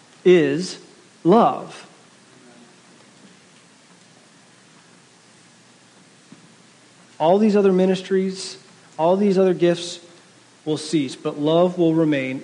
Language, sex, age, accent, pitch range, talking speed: English, male, 40-59, American, 160-190 Hz, 75 wpm